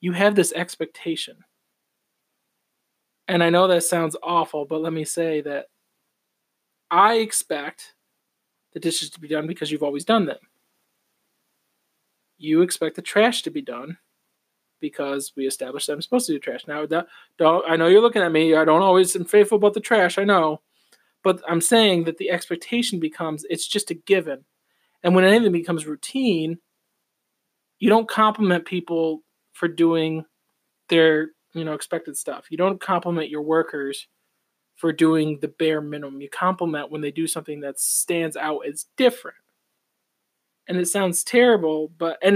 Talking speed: 165 wpm